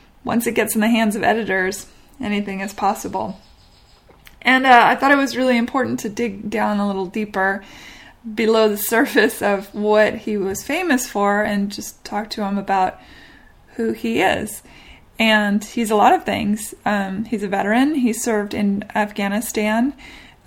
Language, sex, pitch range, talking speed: English, female, 200-235 Hz, 165 wpm